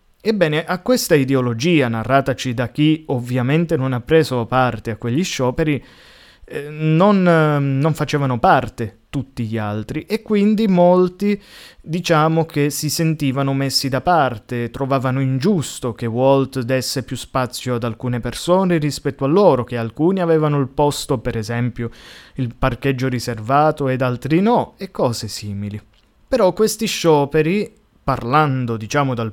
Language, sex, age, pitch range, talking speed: Italian, male, 20-39, 125-165 Hz, 140 wpm